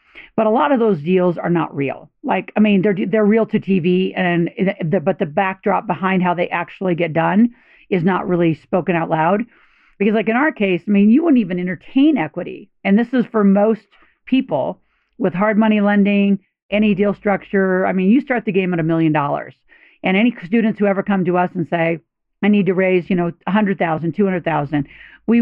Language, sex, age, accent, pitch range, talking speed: English, female, 50-69, American, 175-215 Hz, 210 wpm